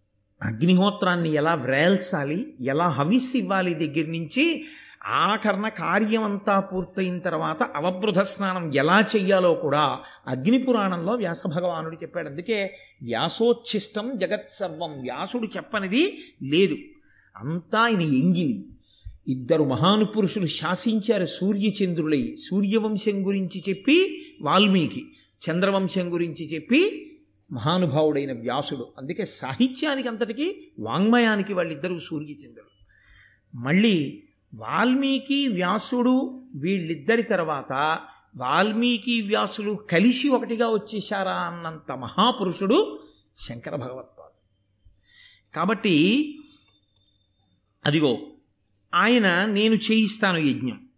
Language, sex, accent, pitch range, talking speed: Telugu, male, native, 160-225 Hz, 80 wpm